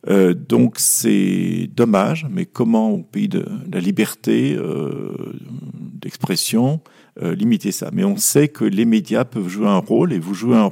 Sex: male